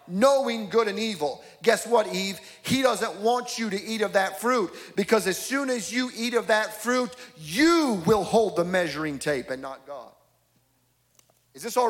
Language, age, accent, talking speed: English, 40-59, American, 185 wpm